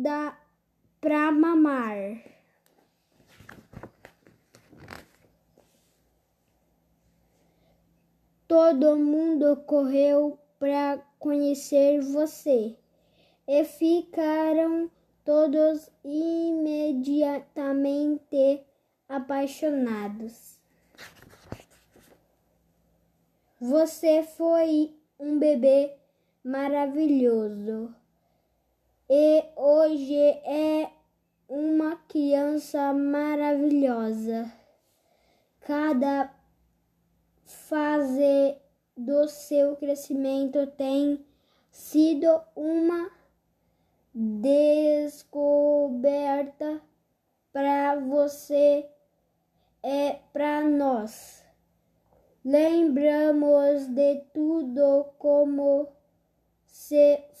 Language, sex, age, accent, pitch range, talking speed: Portuguese, female, 10-29, Brazilian, 280-300 Hz, 45 wpm